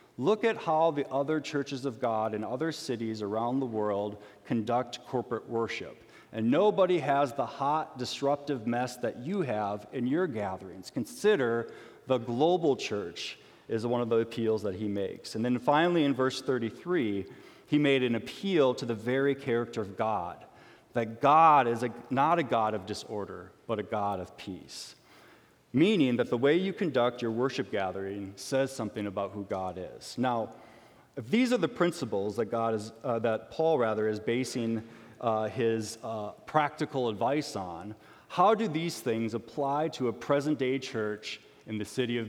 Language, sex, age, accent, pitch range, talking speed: English, male, 40-59, American, 110-140 Hz, 170 wpm